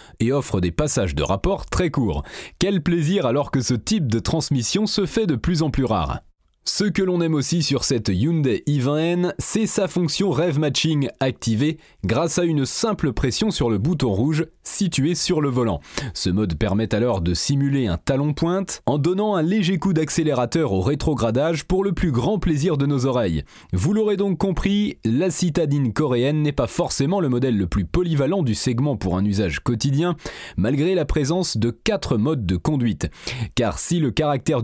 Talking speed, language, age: 190 wpm, French, 30-49